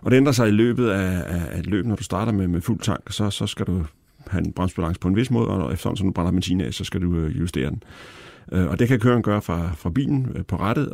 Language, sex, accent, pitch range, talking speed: Danish, male, native, 85-105 Hz, 250 wpm